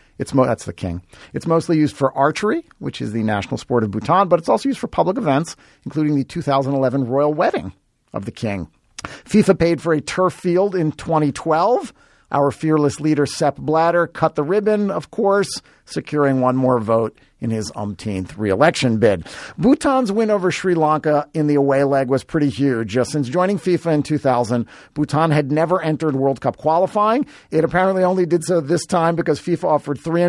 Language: English